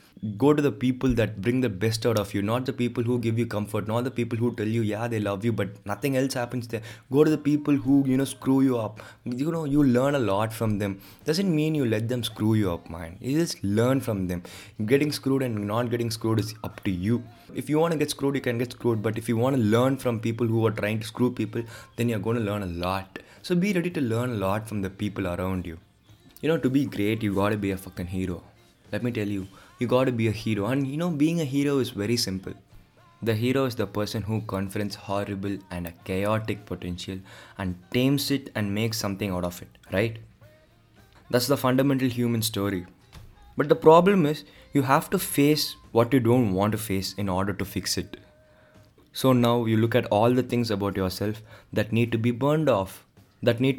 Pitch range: 100-125 Hz